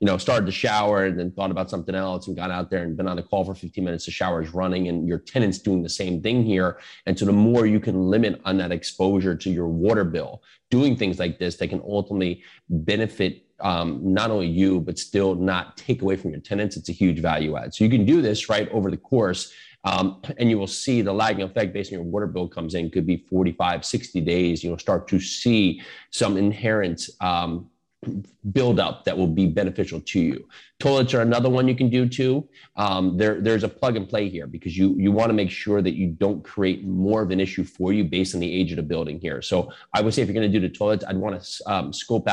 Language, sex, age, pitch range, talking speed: English, male, 30-49, 95-110 Hz, 245 wpm